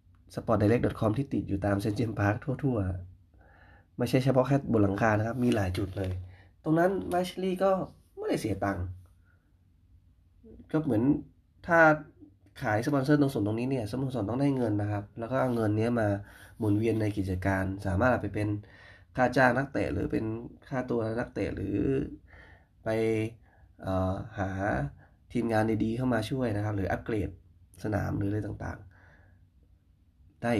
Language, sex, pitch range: Thai, male, 90-115 Hz